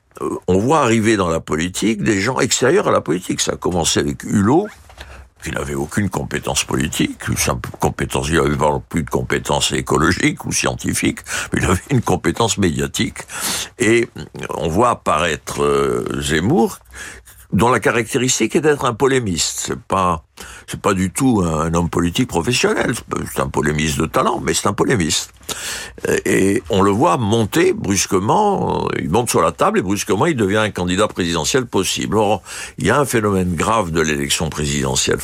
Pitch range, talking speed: 80-115 Hz, 165 wpm